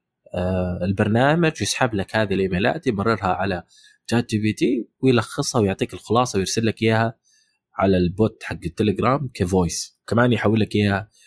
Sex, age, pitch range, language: male, 20-39, 90-115 Hz, Arabic